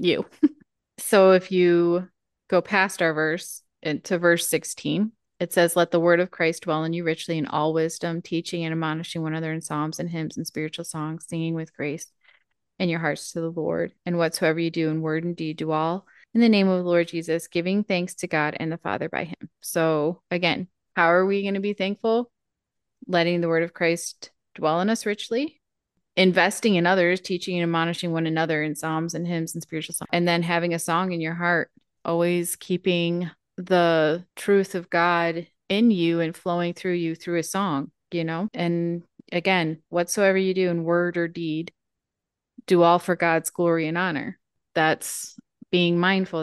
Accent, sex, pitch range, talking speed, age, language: American, female, 165-180 Hz, 195 wpm, 30-49, English